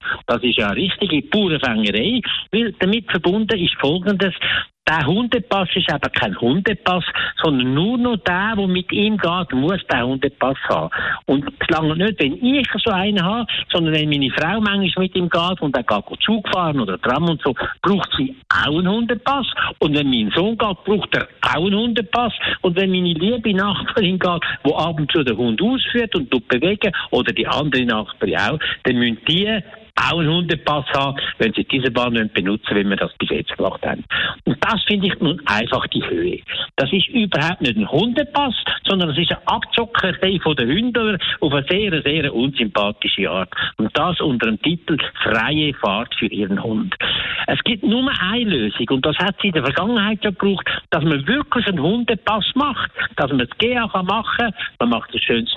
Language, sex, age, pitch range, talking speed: German, male, 60-79, 150-220 Hz, 190 wpm